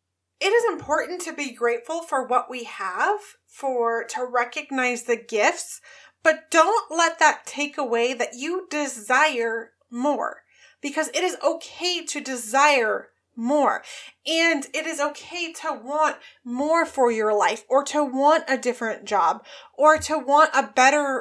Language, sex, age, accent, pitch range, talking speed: English, female, 30-49, American, 250-330 Hz, 150 wpm